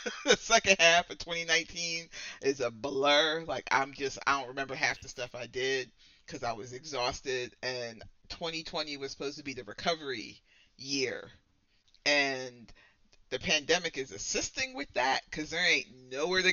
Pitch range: 100-145 Hz